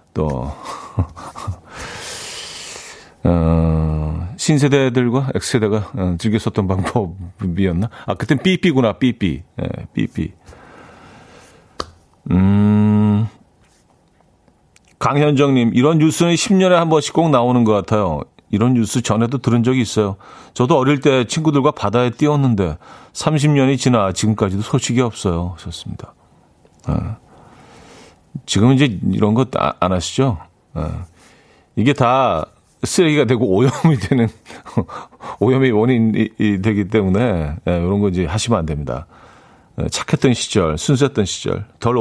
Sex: male